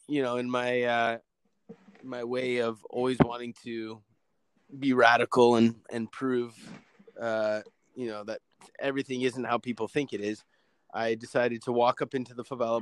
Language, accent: English, American